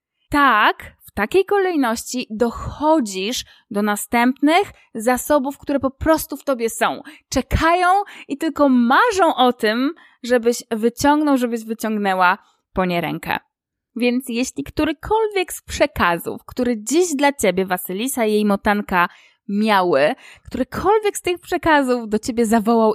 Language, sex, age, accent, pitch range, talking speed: Polish, female, 20-39, native, 215-305 Hz, 125 wpm